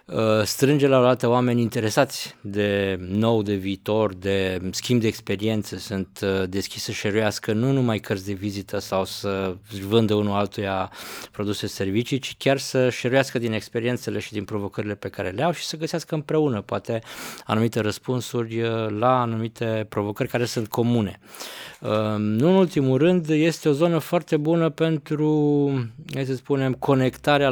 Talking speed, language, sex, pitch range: 150 wpm, Romanian, male, 105-135 Hz